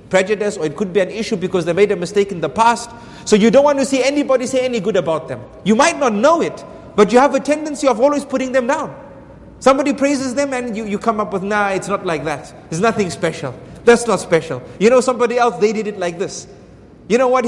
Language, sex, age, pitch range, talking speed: English, male, 30-49, 190-255 Hz, 255 wpm